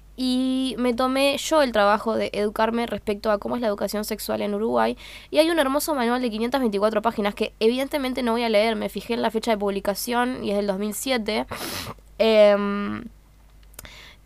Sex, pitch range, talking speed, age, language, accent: female, 210-255 Hz, 175 wpm, 10-29, Spanish, Argentinian